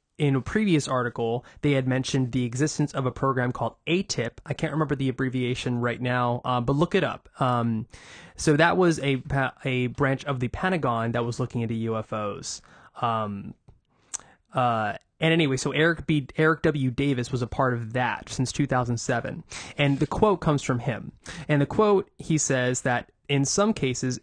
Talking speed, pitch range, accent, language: 180 wpm, 120-150 Hz, American, English